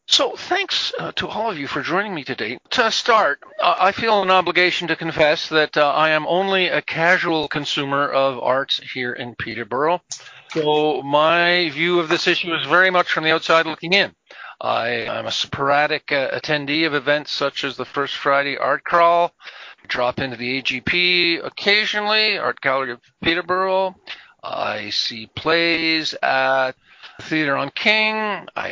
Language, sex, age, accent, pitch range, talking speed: English, male, 50-69, American, 135-175 Hz, 165 wpm